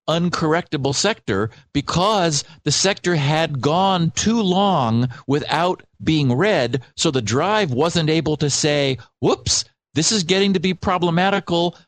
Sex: male